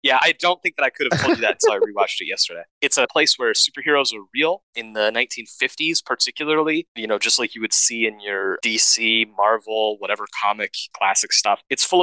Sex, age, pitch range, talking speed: male, 20-39, 115-150 Hz, 220 wpm